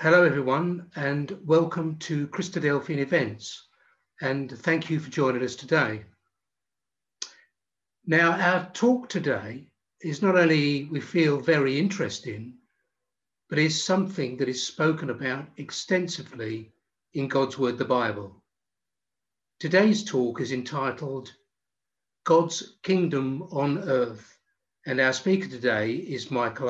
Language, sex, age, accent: English, male, 60-79, British